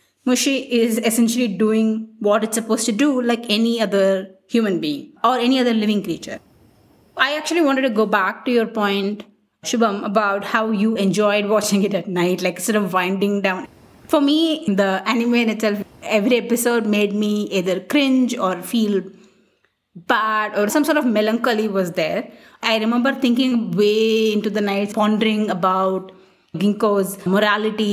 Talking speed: 160 wpm